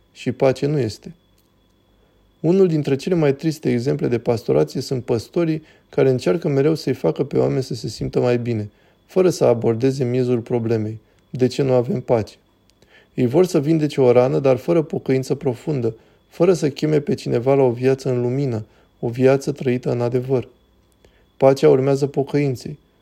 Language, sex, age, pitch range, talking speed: Romanian, male, 20-39, 120-140 Hz, 165 wpm